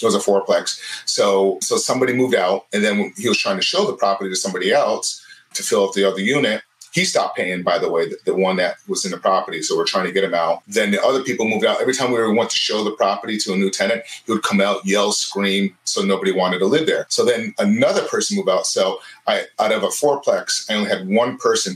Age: 30-49